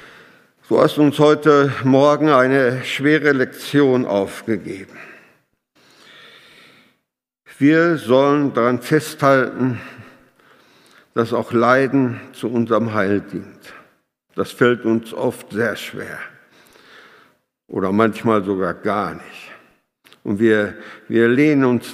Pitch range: 115-135 Hz